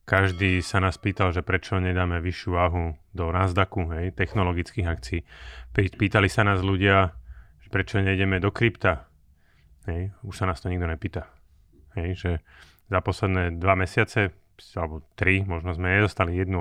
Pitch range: 90-100 Hz